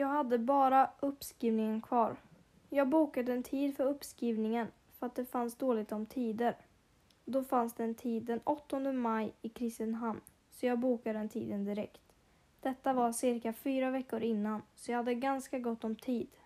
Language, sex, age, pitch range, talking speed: Swedish, female, 10-29, 225-260 Hz, 165 wpm